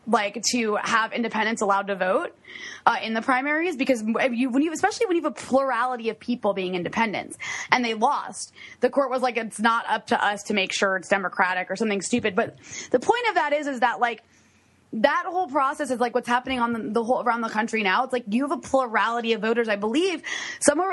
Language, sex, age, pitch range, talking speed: English, female, 20-39, 220-280 Hz, 230 wpm